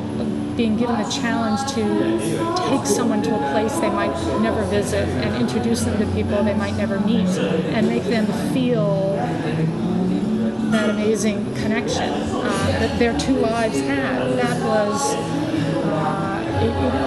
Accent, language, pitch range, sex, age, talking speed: American, English, 165-230 Hz, female, 30-49, 145 wpm